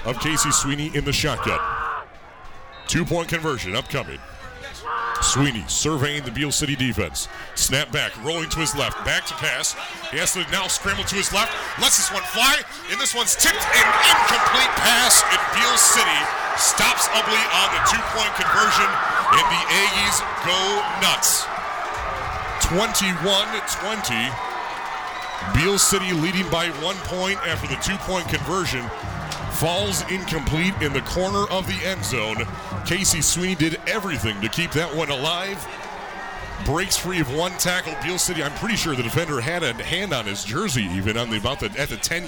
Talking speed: 160 wpm